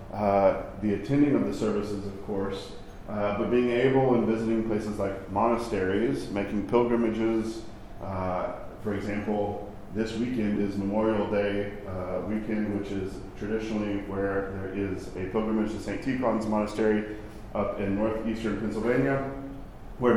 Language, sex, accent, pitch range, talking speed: English, male, American, 100-115 Hz, 135 wpm